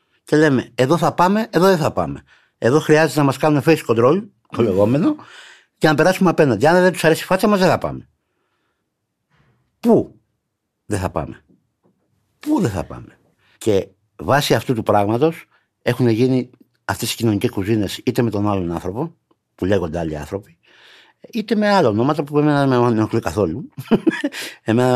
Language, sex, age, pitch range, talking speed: Greek, male, 60-79, 90-135 Hz, 170 wpm